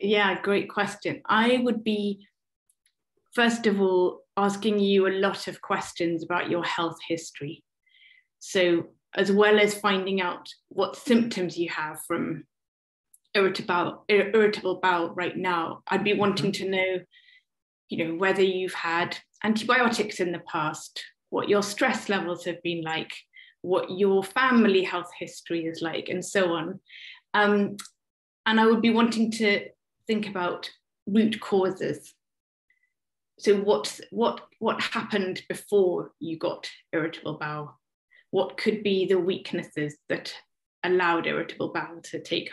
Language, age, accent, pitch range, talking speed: English, 30-49, British, 175-210 Hz, 135 wpm